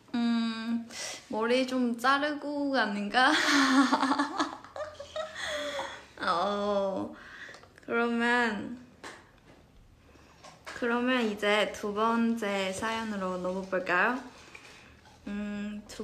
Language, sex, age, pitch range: Korean, female, 20-39, 205-260 Hz